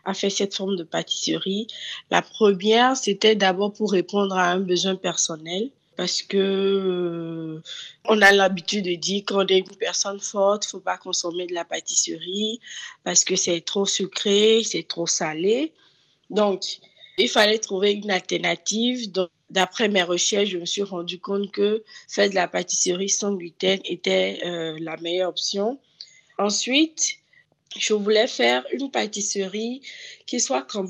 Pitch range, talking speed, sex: 175-205 Hz, 155 wpm, female